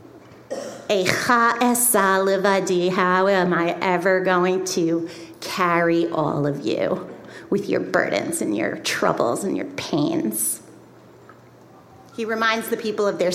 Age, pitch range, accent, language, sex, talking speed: 40-59, 185-240 Hz, American, English, female, 110 wpm